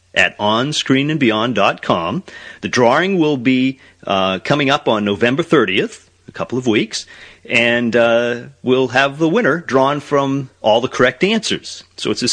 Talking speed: 150 wpm